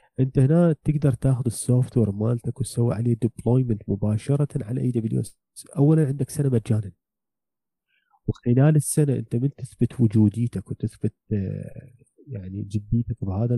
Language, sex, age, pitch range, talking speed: Arabic, male, 30-49, 110-135 Hz, 125 wpm